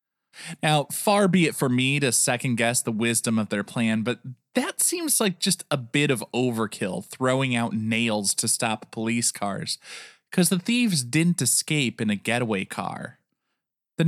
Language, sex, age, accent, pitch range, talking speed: English, male, 20-39, American, 115-175 Hz, 165 wpm